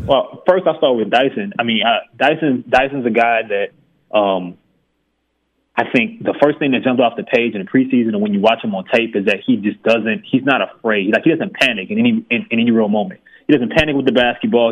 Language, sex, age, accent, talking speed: English, male, 20-39, American, 245 wpm